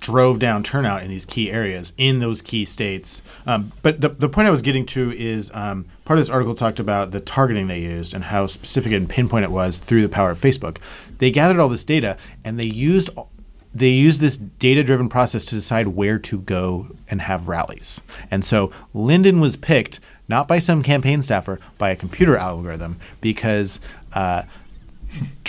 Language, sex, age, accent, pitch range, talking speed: English, male, 30-49, American, 95-130 Hz, 190 wpm